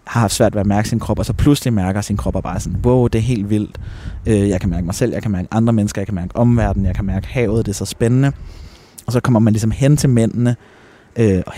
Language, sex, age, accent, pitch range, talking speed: Danish, male, 20-39, native, 90-110 Hz, 275 wpm